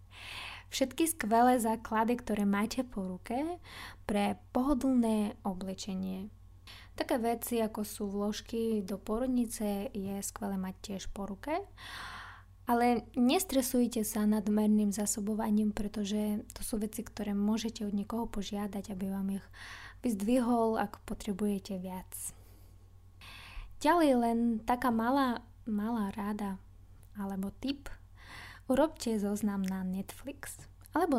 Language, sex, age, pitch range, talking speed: Slovak, female, 20-39, 195-235 Hz, 110 wpm